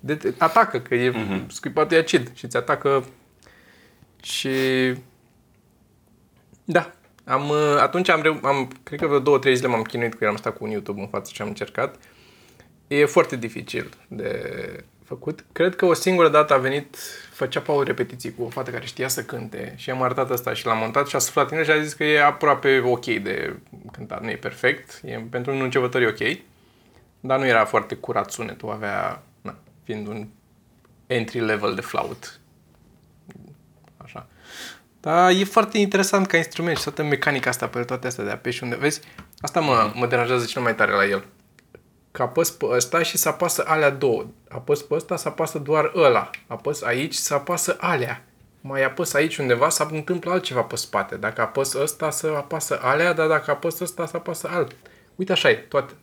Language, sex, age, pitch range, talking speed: Romanian, male, 20-39, 125-160 Hz, 180 wpm